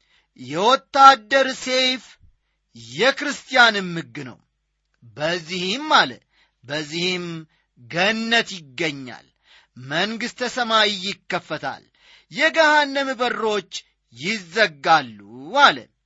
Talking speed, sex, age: 65 wpm, male, 40-59